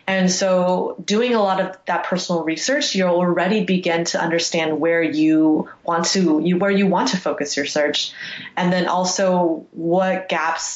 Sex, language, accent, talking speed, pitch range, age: female, English, American, 175 wpm, 165-190 Hz, 20-39